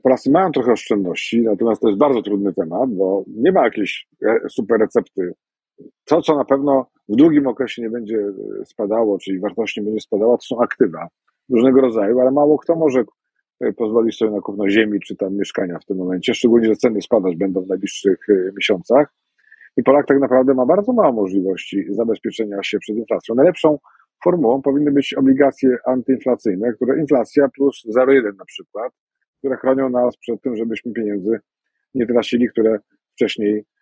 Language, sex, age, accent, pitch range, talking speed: Polish, male, 40-59, native, 110-135 Hz, 165 wpm